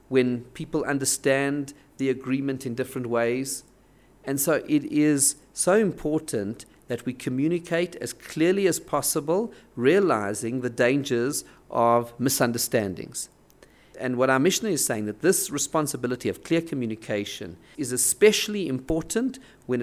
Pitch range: 130-180 Hz